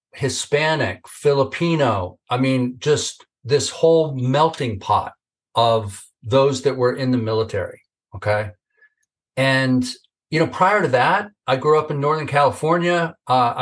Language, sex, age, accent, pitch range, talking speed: English, male, 40-59, American, 120-145 Hz, 130 wpm